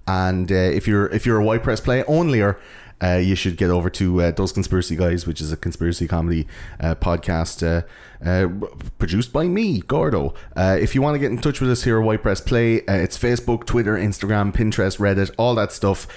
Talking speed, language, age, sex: 220 wpm, English, 30-49, male